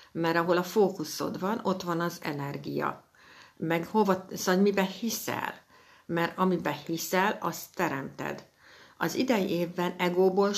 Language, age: Hungarian, 60-79